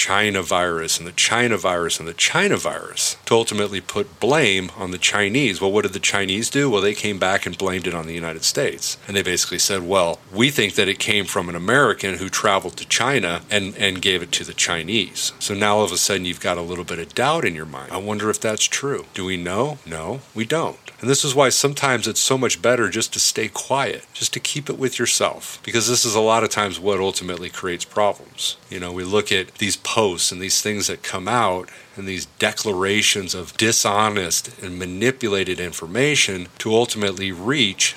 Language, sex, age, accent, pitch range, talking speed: English, male, 40-59, American, 95-115 Hz, 220 wpm